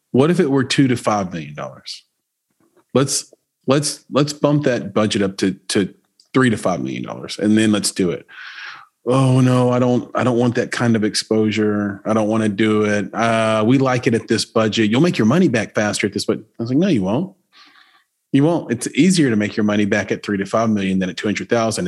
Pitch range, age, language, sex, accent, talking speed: 95-120 Hz, 30-49, English, male, American, 235 wpm